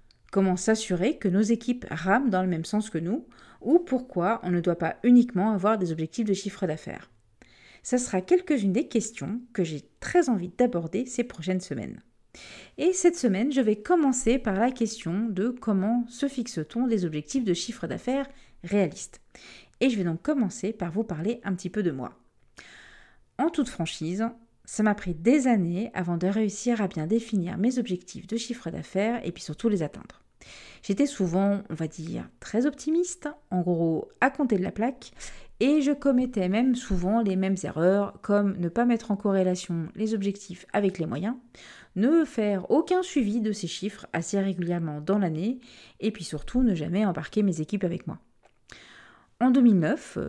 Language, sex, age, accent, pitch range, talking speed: French, female, 40-59, French, 180-240 Hz, 180 wpm